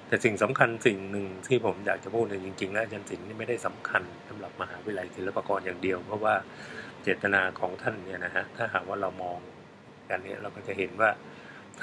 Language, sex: Thai, male